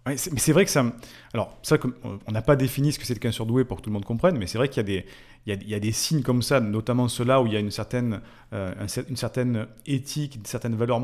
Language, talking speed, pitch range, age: French, 285 wpm, 105-140 Hz, 30-49